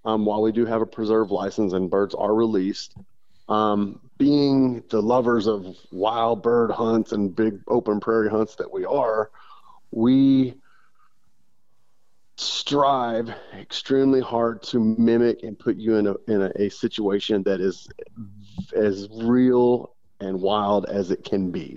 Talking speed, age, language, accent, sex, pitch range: 145 wpm, 30-49, English, American, male, 100-120 Hz